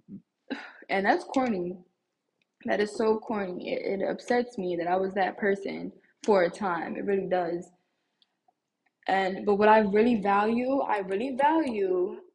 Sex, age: female, 10-29